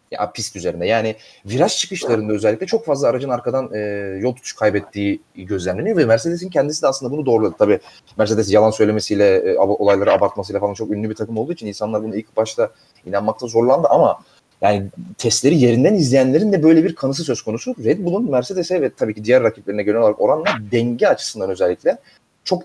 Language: Turkish